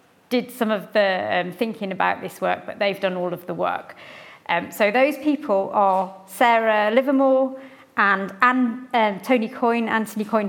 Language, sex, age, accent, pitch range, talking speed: English, female, 40-59, British, 200-255 Hz, 170 wpm